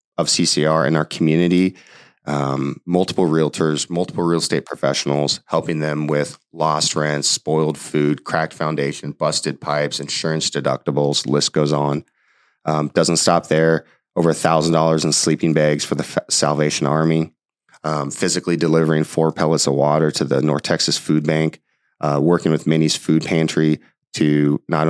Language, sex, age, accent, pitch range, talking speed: English, male, 30-49, American, 75-80 Hz, 155 wpm